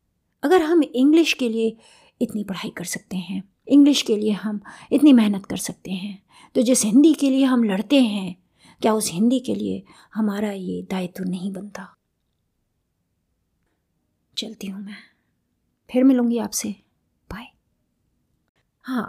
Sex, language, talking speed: female, Hindi, 140 wpm